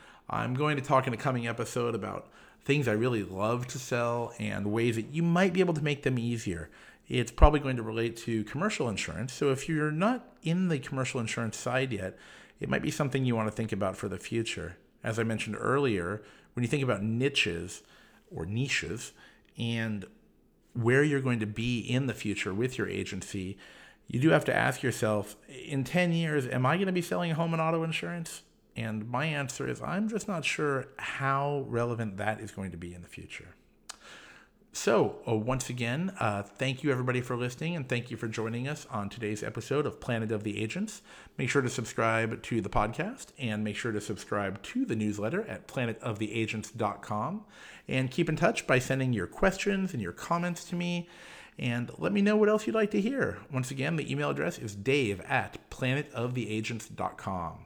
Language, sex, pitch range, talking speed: English, male, 110-145 Hz, 195 wpm